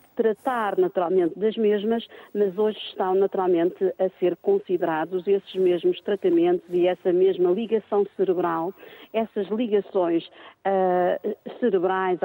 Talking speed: 115 wpm